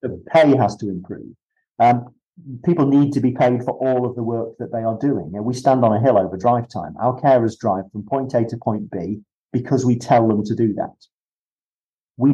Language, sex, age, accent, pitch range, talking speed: English, male, 40-59, British, 110-135 Hz, 220 wpm